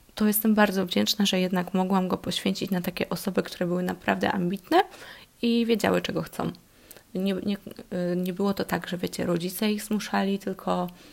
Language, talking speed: Polish, 175 wpm